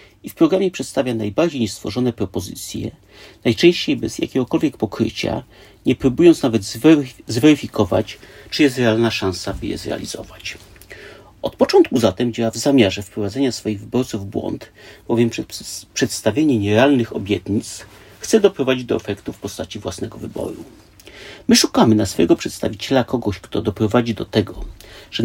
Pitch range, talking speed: 105-135 Hz, 135 wpm